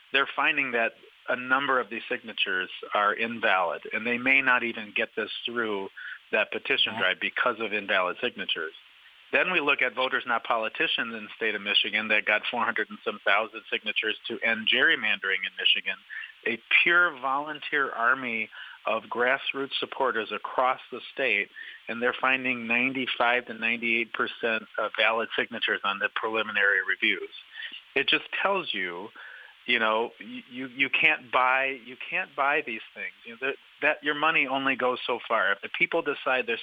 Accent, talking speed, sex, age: American, 170 wpm, male, 40-59